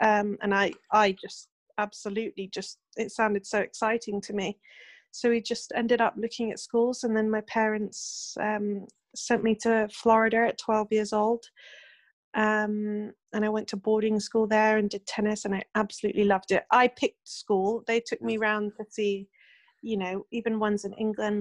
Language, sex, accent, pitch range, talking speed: English, female, British, 200-220 Hz, 180 wpm